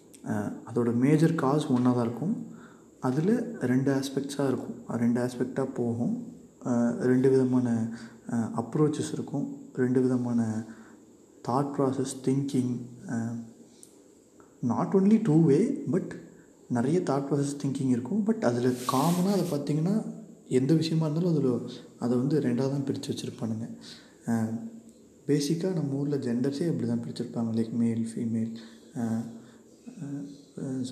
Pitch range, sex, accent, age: 115-145 Hz, male, native, 20-39